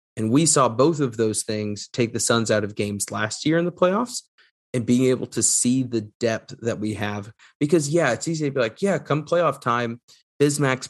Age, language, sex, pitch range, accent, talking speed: 30-49, English, male, 110-130 Hz, American, 220 wpm